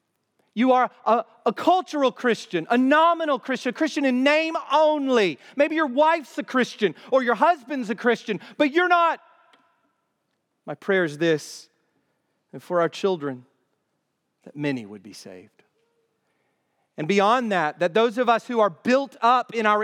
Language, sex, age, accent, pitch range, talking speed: English, male, 40-59, American, 170-270 Hz, 160 wpm